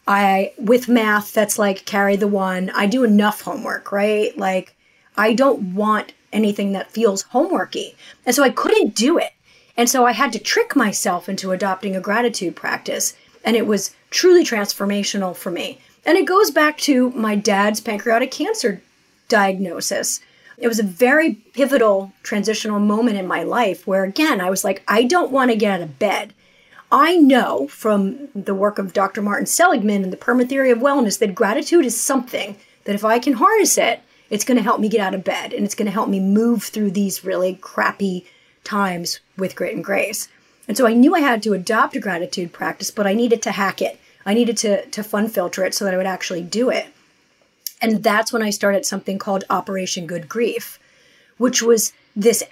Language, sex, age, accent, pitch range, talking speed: English, female, 30-49, American, 195-245 Hz, 200 wpm